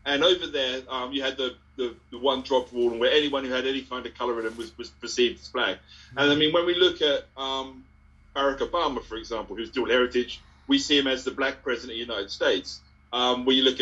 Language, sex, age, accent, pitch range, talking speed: English, male, 30-49, British, 120-150 Hz, 250 wpm